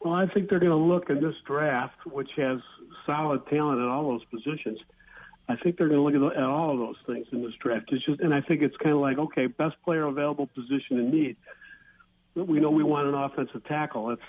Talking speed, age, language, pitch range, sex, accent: 245 wpm, 50-69, English, 125-150 Hz, male, American